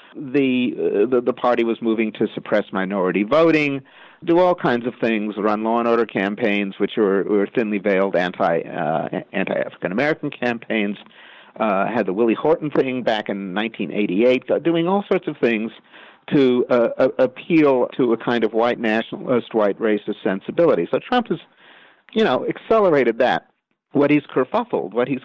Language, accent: English, American